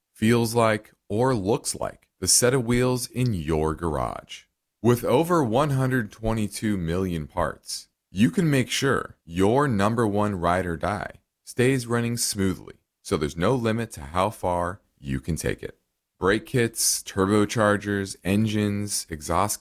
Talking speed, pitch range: 140 wpm, 95-130 Hz